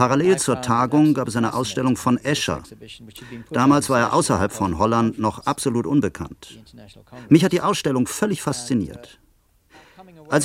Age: 50-69